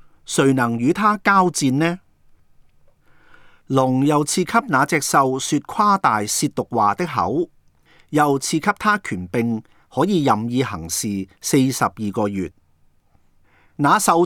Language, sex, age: Chinese, male, 40-59